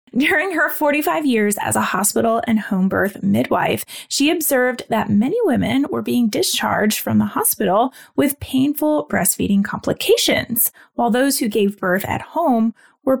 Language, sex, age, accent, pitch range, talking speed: English, female, 20-39, American, 205-280 Hz, 155 wpm